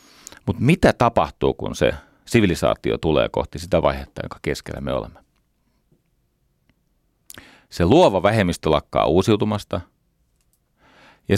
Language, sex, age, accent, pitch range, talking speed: Finnish, male, 40-59, native, 80-105 Hz, 105 wpm